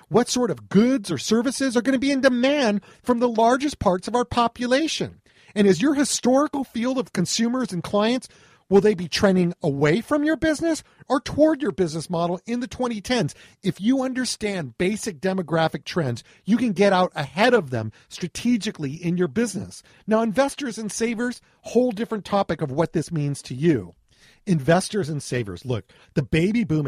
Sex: male